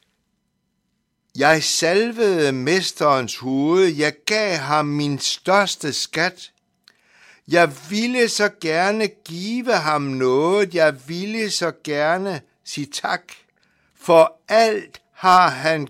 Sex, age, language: male, 60-79, Danish